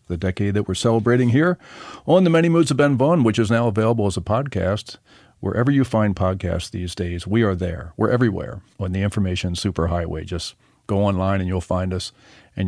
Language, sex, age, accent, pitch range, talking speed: English, male, 50-69, American, 90-120 Hz, 205 wpm